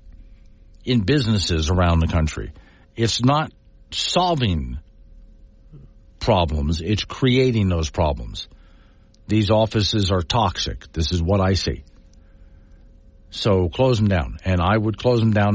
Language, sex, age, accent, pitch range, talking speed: English, male, 60-79, American, 85-125 Hz, 125 wpm